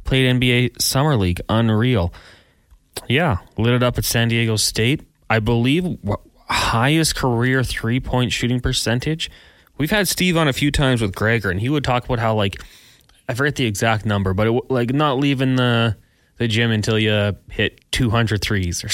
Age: 20-39